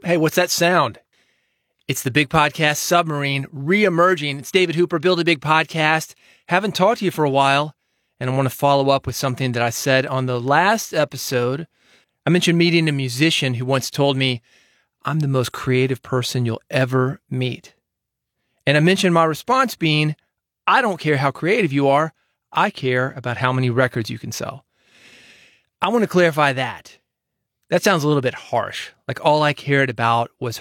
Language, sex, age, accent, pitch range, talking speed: English, male, 30-49, American, 130-165 Hz, 185 wpm